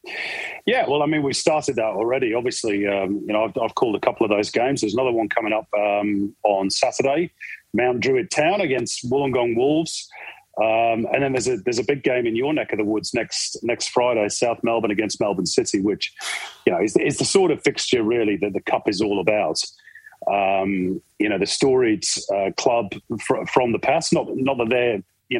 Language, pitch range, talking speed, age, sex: English, 105-145 Hz, 210 wpm, 40-59, male